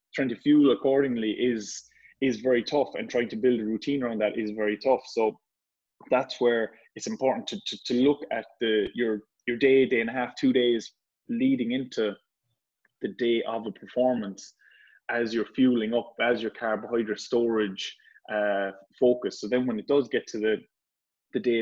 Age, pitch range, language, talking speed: 20-39, 110-130 Hz, English, 185 wpm